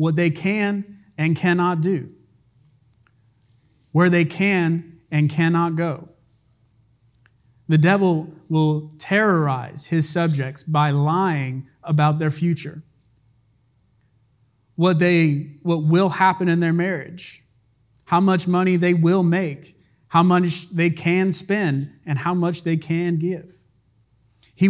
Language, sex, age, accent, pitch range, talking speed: English, male, 30-49, American, 125-170 Hz, 115 wpm